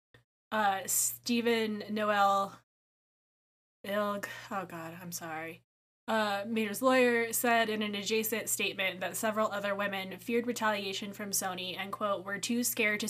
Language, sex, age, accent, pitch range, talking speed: English, female, 10-29, American, 195-230 Hz, 135 wpm